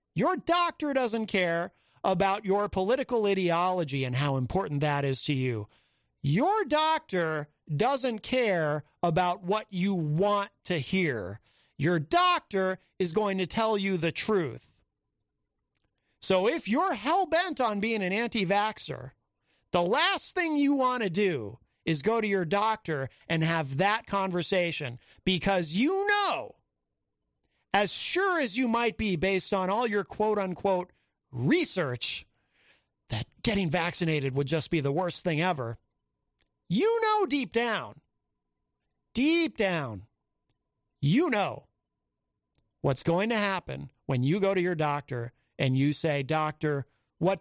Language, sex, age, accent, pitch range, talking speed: English, male, 40-59, American, 150-220 Hz, 135 wpm